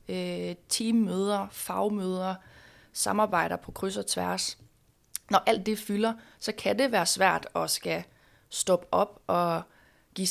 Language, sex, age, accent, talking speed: Danish, female, 30-49, native, 130 wpm